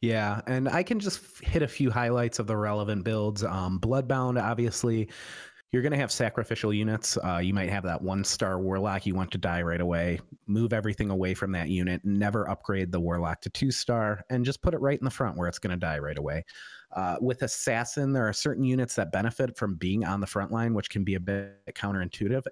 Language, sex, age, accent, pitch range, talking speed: English, male, 30-49, American, 95-115 Hz, 215 wpm